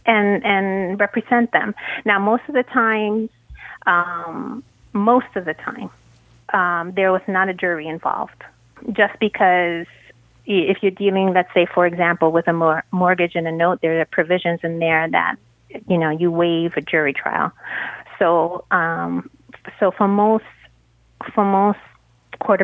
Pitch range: 170-205 Hz